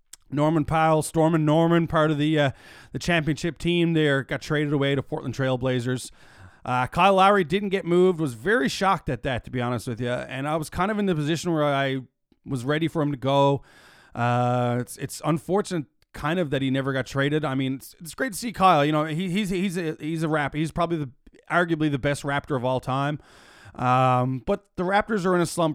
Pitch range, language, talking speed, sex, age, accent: 125-155 Hz, English, 225 wpm, male, 20-39, American